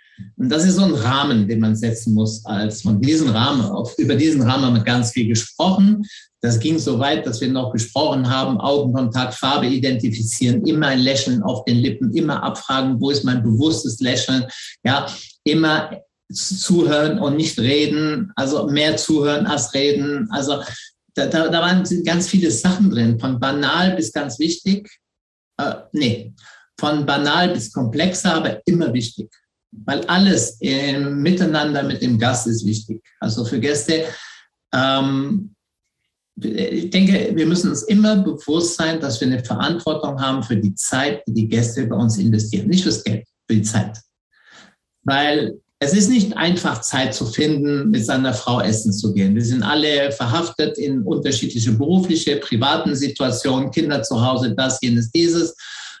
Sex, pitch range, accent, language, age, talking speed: male, 120-160 Hz, German, German, 50-69, 160 wpm